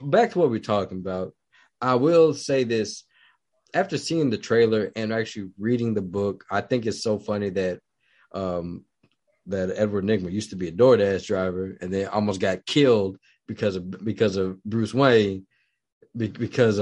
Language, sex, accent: English, male, American